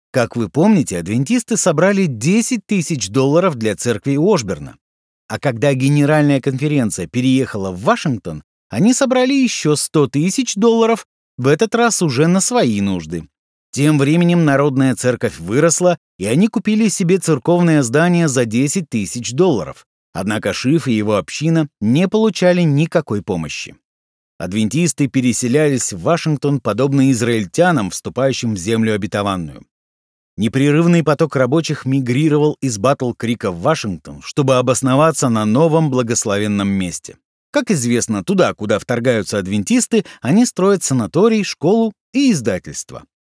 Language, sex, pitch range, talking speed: Russian, male, 115-180 Hz, 130 wpm